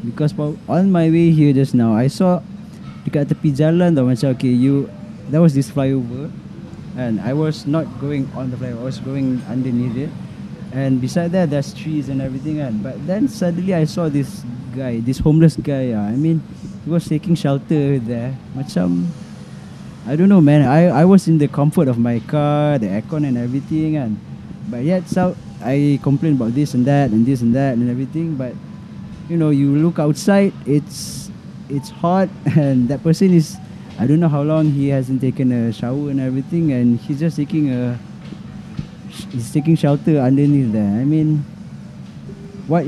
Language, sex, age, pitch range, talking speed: English, male, 20-39, 130-160 Hz, 180 wpm